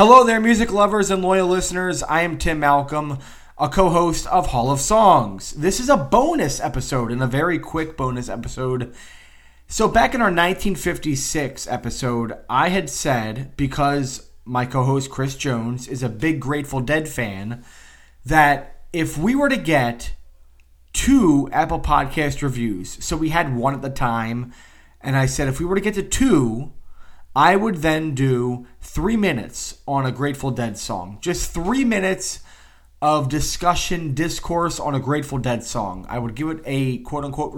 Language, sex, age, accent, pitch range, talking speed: English, male, 20-39, American, 120-165 Hz, 165 wpm